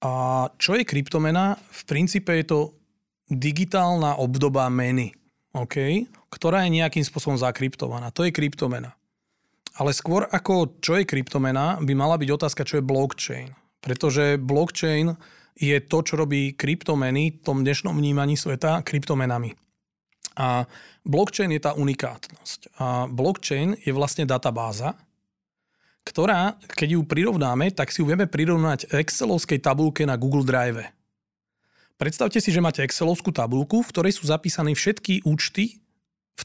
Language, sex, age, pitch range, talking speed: Slovak, male, 30-49, 130-170 Hz, 135 wpm